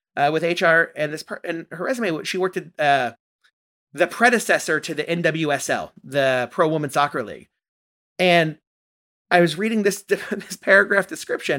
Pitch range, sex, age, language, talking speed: 150-190 Hz, male, 30-49, English, 160 wpm